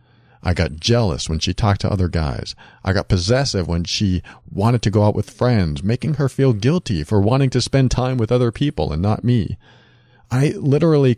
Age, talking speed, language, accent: 40-59, 200 wpm, English, American